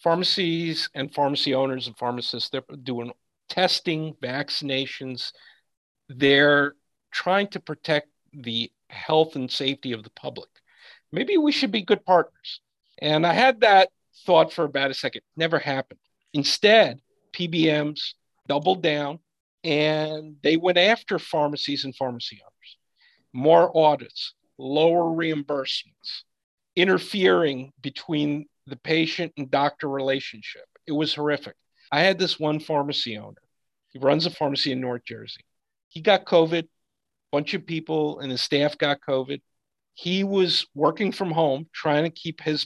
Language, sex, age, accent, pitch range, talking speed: English, male, 50-69, American, 135-170 Hz, 140 wpm